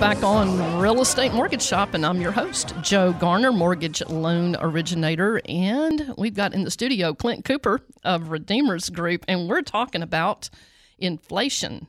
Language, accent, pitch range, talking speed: English, American, 170-215 Hz, 155 wpm